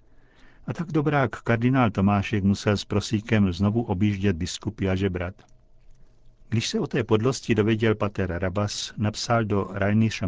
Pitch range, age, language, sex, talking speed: 100-115 Hz, 50-69, Czech, male, 140 wpm